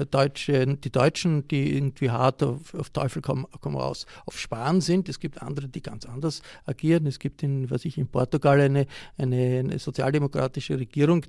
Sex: male